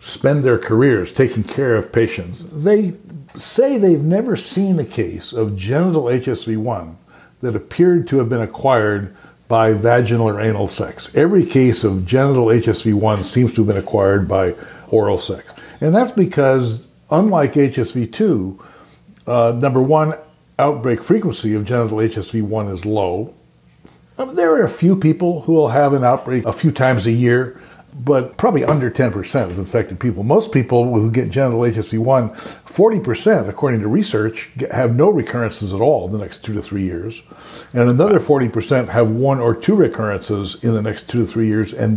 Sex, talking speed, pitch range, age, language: male, 165 wpm, 105-135 Hz, 60-79, English